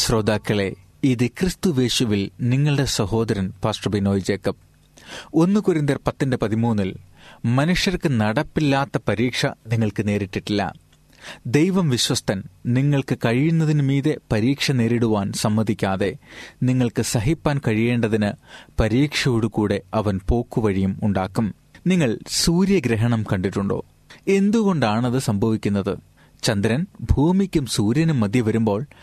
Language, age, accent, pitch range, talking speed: Malayalam, 30-49, native, 110-145 Hz, 85 wpm